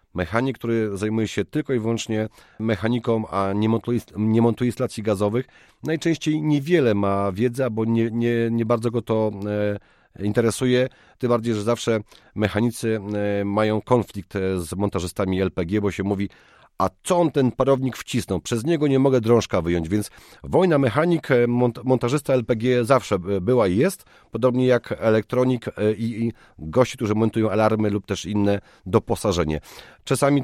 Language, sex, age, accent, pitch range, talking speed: Polish, male, 40-59, native, 100-120 Hz, 145 wpm